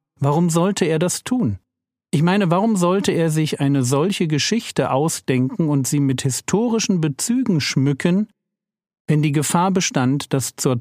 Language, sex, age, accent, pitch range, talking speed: German, male, 50-69, German, 125-170 Hz, 150 wpm